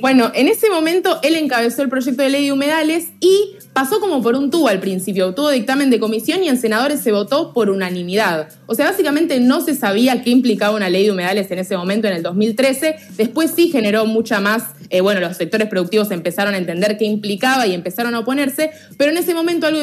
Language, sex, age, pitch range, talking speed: Spanish, female, 20-39, 200-275 Hz, 220 wpm